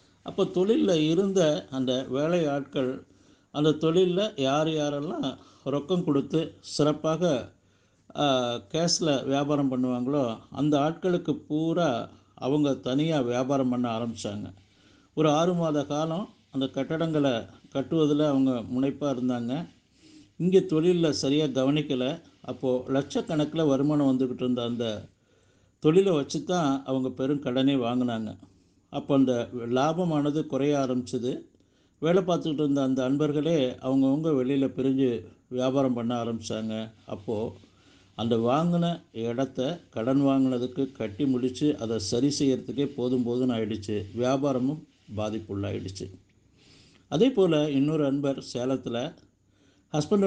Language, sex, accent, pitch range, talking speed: Tamil, male, native, 120-150 Hz, 105 wpm